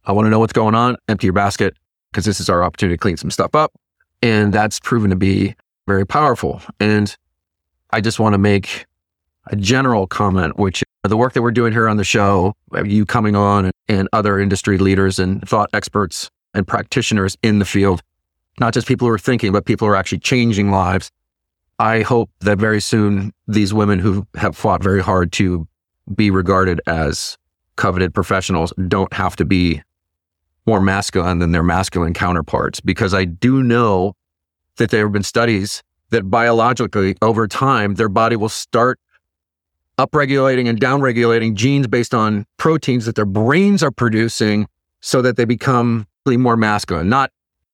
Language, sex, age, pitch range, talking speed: English, male, 30-49, 95-115 Hz, 175 wpm